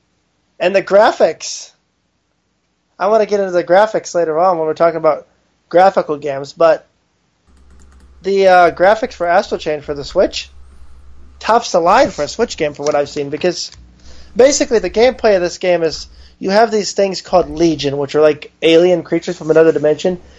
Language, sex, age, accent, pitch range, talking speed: English, male, 20-39, American, 150-180 Hz, 180 wpm